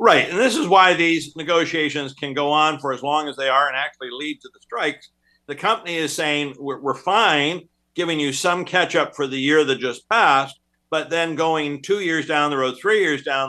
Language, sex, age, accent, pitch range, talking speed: English, male, 50-69, American, 135-165 Hz, 225 wpm